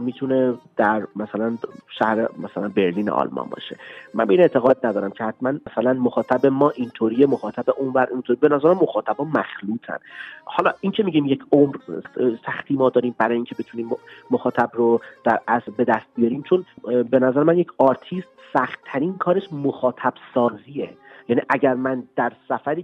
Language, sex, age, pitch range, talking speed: Persian, male, 30-49, 120-150 Hz, 150 wpm